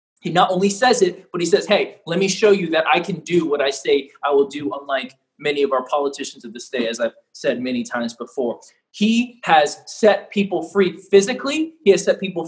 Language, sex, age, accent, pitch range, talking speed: English, male, 30-49, American, 170-235 Hz, 225 wpm